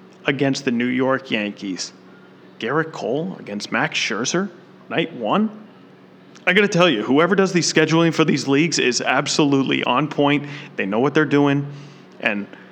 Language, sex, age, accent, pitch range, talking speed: English, male, 30-49, American, 130-150 Hz, 155 wpm